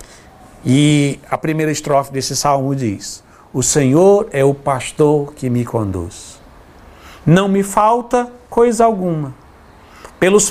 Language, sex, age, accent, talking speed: Portuguese, male, 60-79, Brazilian, 120 wpm